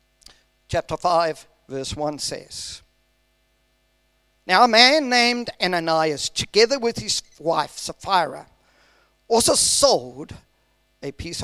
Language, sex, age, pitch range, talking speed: English, male, 50-69, 145-240 Hz, 100 wpm